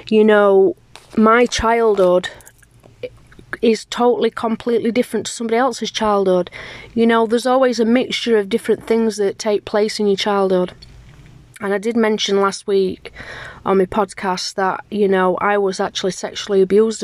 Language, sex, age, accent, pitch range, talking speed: English, female, 30-49, British, 190-225 Hz, 155 wpm